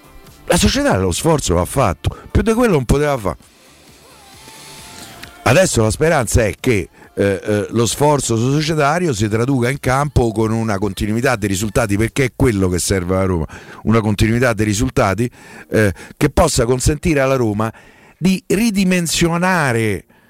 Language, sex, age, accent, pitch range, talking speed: Italian, male, 50-69, native, 110-150 Hz, 150 wpm